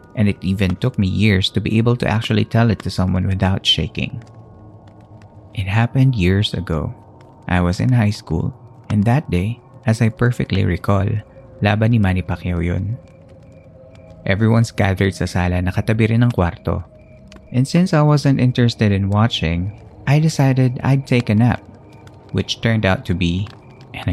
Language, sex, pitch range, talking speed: Filipino, male, 95-120 Hz, 160 wpm